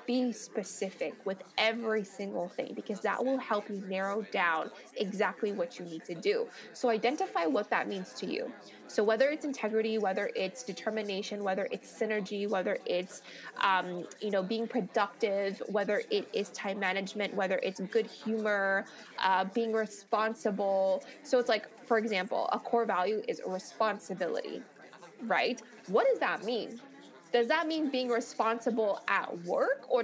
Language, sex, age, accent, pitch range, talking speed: English, female, 20-39, American, 195-235 Hz, 155 wpm